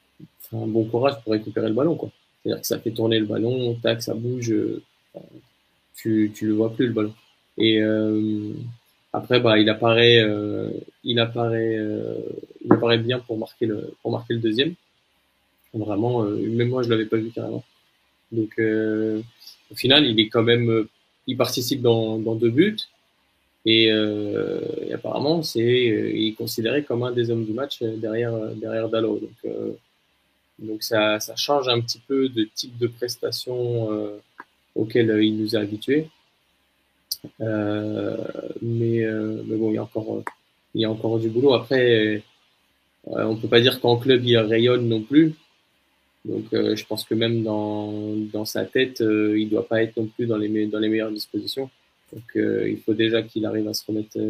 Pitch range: 110-120 Hz